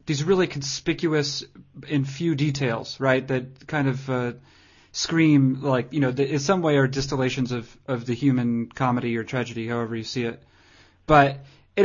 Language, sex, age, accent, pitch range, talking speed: English, male, 30-49, American, 125-145 Hz, 170 wpm